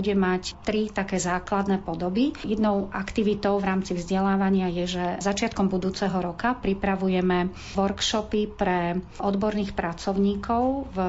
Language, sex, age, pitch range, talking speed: Slovak, female, 40-59, 180-205 Hz, 120 wpm